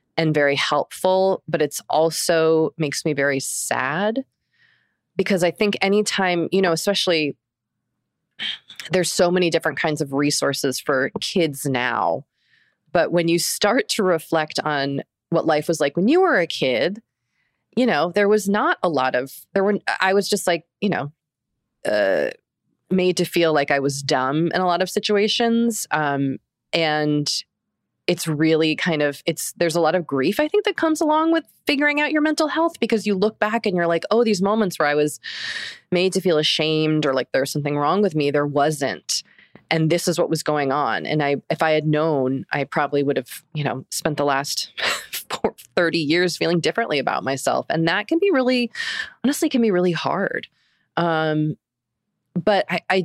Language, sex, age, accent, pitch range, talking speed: English, female, 30-49, American, 150-200 Hz, 185 wpm